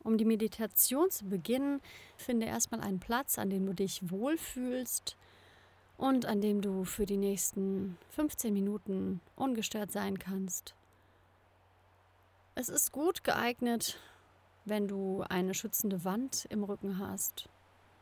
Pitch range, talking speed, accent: 190-230 Hz, 125 wpm, German